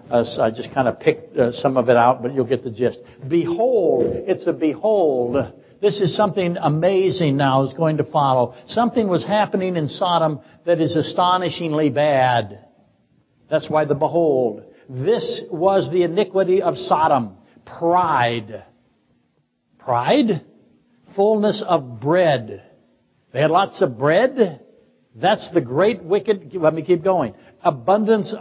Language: English